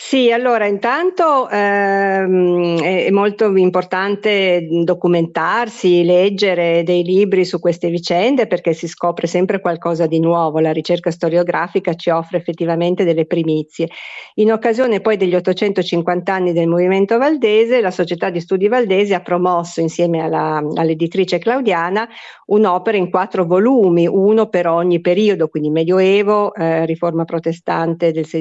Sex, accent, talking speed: female, native, 135 wpm